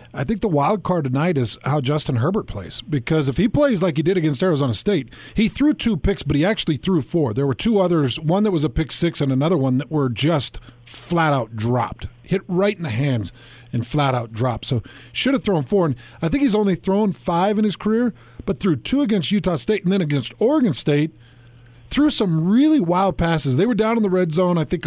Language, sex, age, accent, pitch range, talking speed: English, male, 40-59, American, 140-195 Hz, 235 wpm